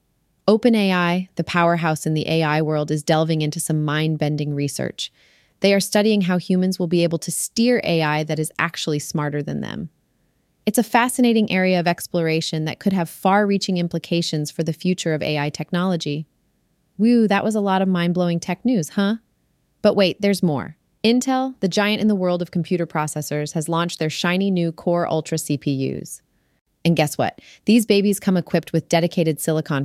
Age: 30-49